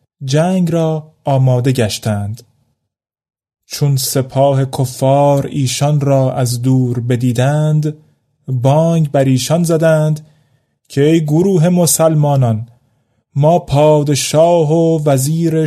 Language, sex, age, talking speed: Persian, male, 30-49, 90 wpm